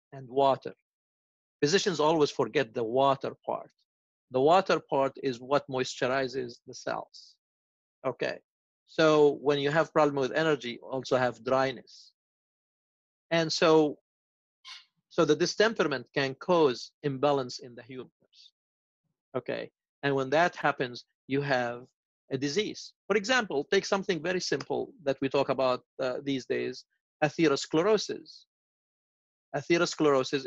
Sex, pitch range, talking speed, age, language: male, 130-160 Hz, 125 wpm, 50-69, English